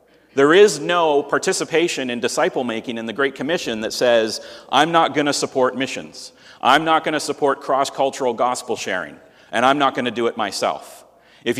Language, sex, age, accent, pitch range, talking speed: English, male, 40-59, American, 120-155 Hz, 180 wpm